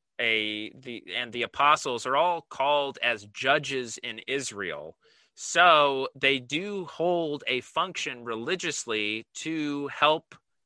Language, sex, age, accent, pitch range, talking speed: English, male, 30-49, American, 110-145 Hz, 105 wpm